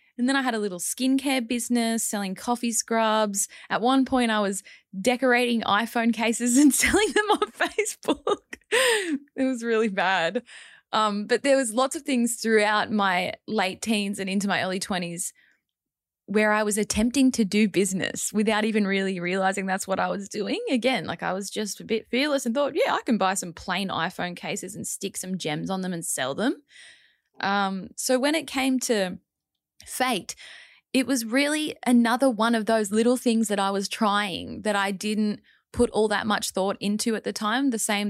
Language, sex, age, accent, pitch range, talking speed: English, female, 20-39, Australian, 190-245 Hz, 190 wpm